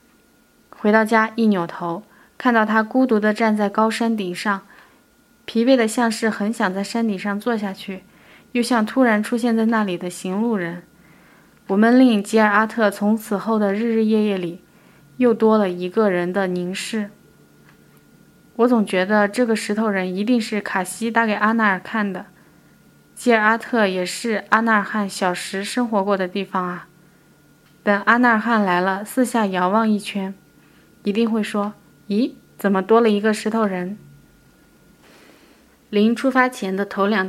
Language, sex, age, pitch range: Chinese, female, 20-39, 195-230 Hz